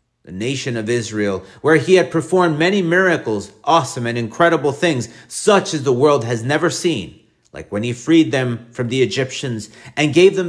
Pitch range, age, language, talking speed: 120-165 Hz, 40-59, English, 185 wpm